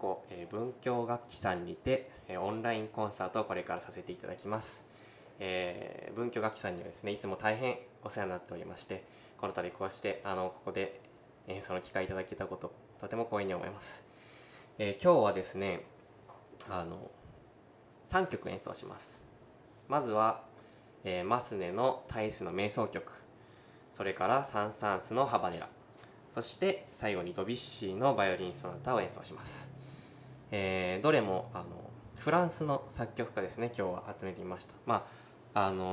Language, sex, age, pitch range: Japanese, male, 20-39, 95-120 Hz